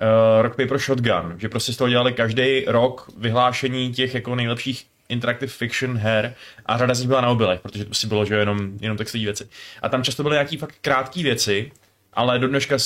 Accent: native